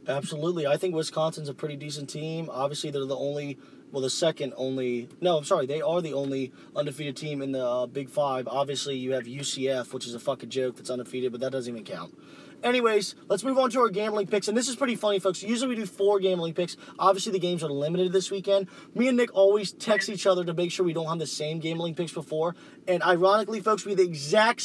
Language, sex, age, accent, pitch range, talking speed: English, male, 20-39, American, 160-205 Hz, 240 wpm